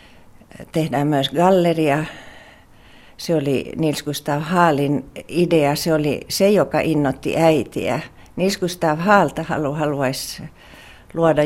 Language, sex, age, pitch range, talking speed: Finnish, female, 60-79, 135-160 Hz, 100 wpm